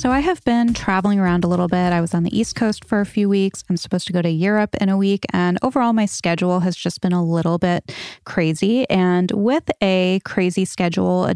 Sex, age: female, 20-39